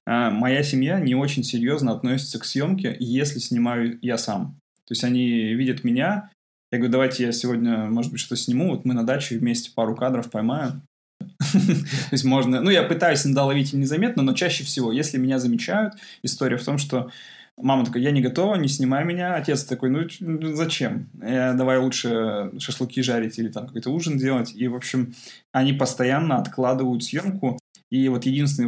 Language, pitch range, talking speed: Russian, 120-145 Hz, 170 wpm